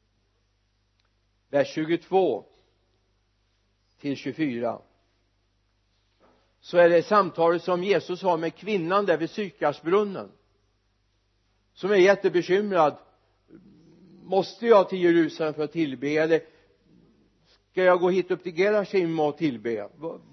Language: Swedish